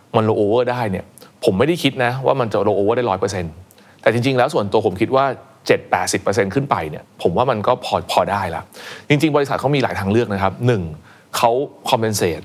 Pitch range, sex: 95-120 Hz, male